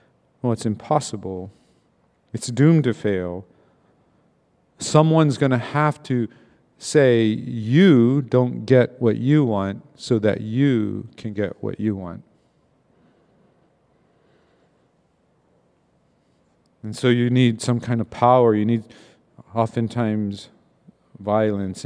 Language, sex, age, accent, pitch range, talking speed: English, male, 50-69, American, 110-140 Hz, 100 wpm